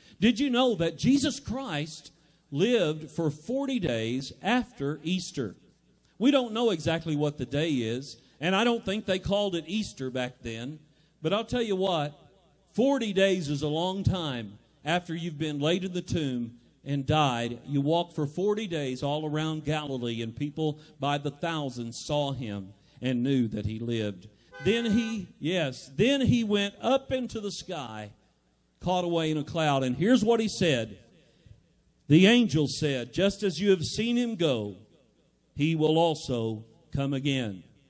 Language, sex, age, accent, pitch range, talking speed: English, male, 50-69, American, 130-195 Hz, 165 wpm